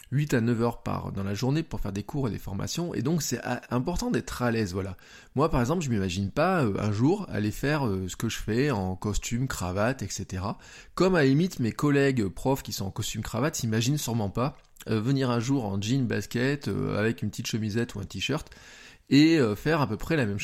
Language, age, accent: French, 20-39, French